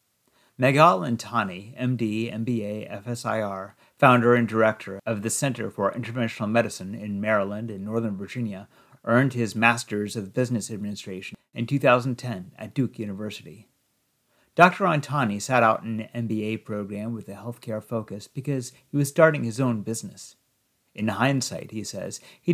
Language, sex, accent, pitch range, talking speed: English, male, American, 105-130 Hz, 140 wpm